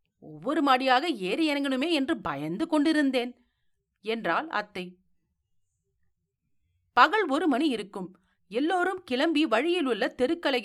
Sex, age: female, 40-59